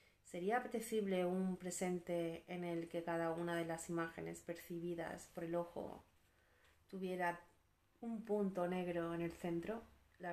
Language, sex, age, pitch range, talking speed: Spanish, female, 30-49, 170-185 Hz, 140 wpm